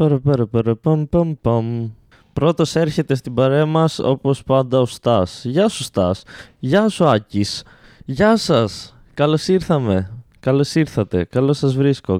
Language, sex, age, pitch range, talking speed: Greek, male, 20-39, 115-155 Hz, 150 wpm